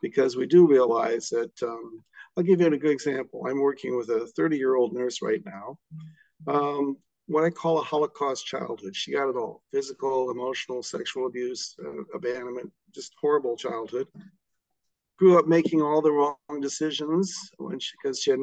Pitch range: 140-225 Hz